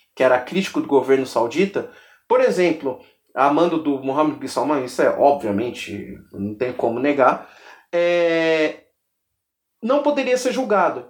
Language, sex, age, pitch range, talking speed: Portuguese, male, 30-49, 150-225 Hz, 135 wpm